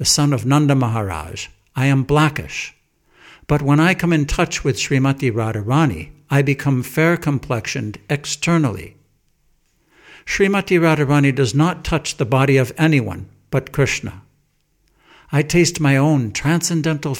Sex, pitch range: male, 125-155 Hz